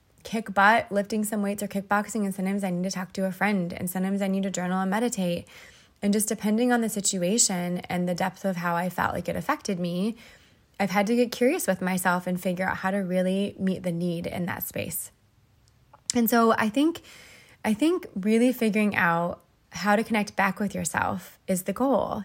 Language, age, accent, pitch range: English, 20-39, American, 180-215 Hz